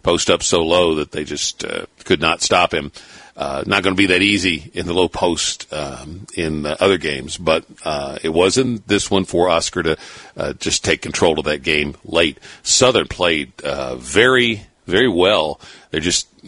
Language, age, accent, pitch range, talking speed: English, 50-69, American, 85-100 Hz, 205 wpm